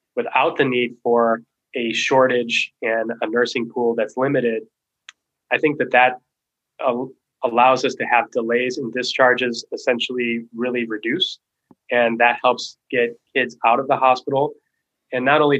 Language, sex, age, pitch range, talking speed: English, male, 20-39, 115-135 Hz, 150 wpm